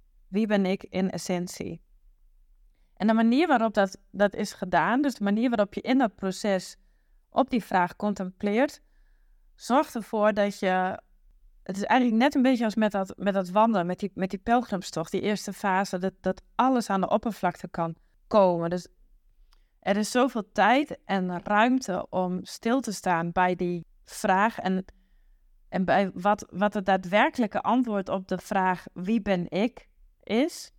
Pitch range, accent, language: 180-215 Hz, Dutch, Dutch